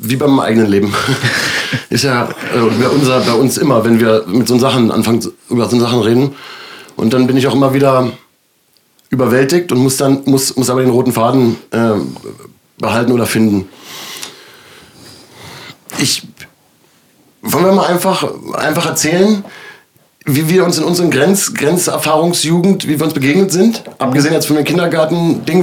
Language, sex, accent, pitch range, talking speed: German, male, German, 135-175 Hz, 155 wpm